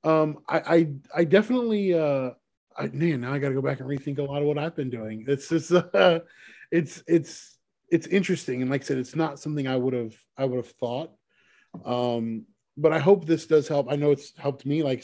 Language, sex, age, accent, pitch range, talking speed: English, male, 20-39, American, 135-180 Hz, 225 wpm